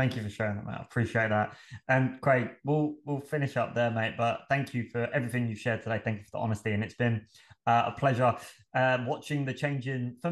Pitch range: 105-125 Hz